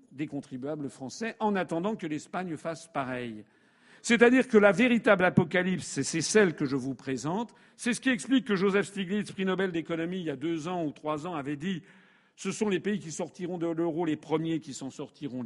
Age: 50-69